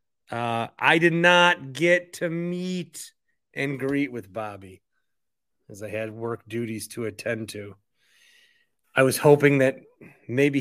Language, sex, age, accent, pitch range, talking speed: English, male, 30-49, American, 120-160 Hz, 135 wpm